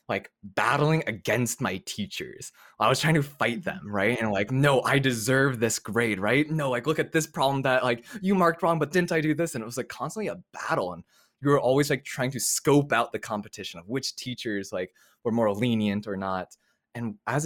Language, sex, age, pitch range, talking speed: English, male, 20-39, 105-150 Hz, 225 wpm